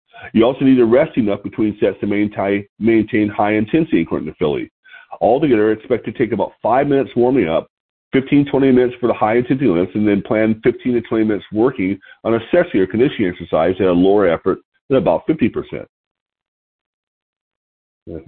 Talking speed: 170 wpm